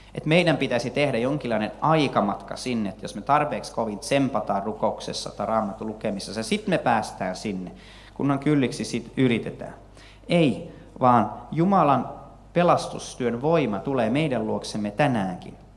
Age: 30-49